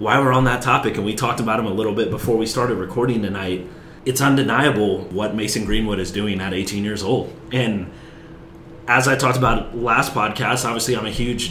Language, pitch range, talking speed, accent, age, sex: English, 110-145 Hz, 210 wpm, American, 30-49, male